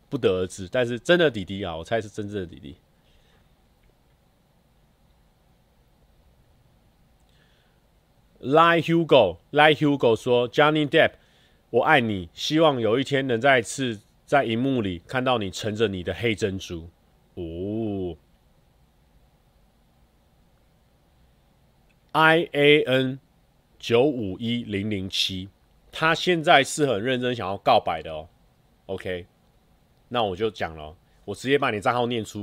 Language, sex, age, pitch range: Chinese, male, 30-49, 95-145 Hz